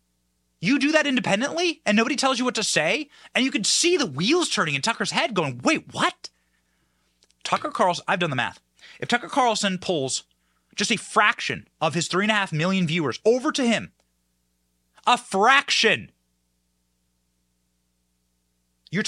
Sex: male